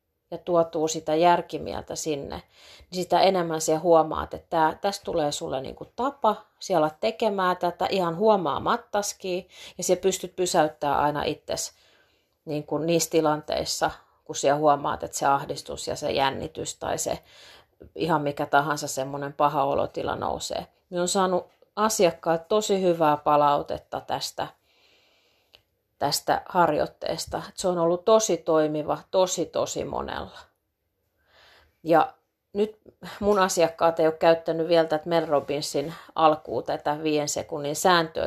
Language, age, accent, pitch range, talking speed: Finnish, 30-49, native, 155-195 Hz, 125 wpm